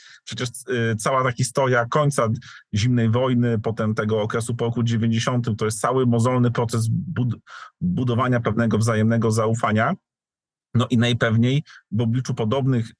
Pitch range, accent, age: 110-125 Hz, native, 40-59